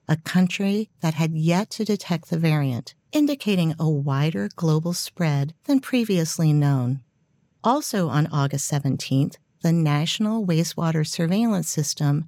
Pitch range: 150-190 Hz